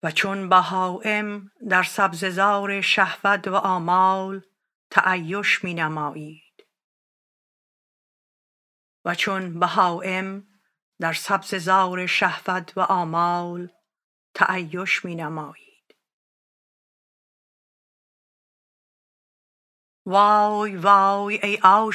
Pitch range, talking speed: 170-200 Hz, 75 wpm